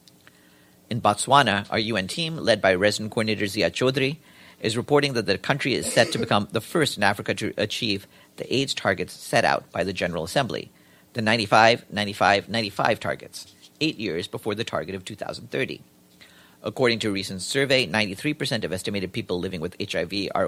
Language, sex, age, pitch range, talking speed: English, male, 50-69, 85-120 Hz, 175 wpm